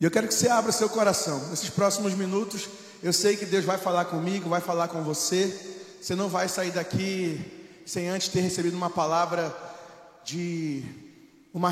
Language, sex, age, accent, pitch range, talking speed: Portuguese, male, 20-39, Brazilian, 170-210 Hz, 185 wpm